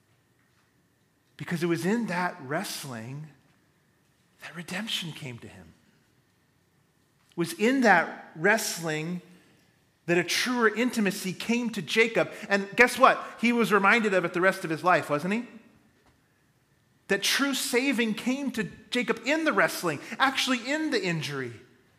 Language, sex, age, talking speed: English, male, 40-59, 140 wpm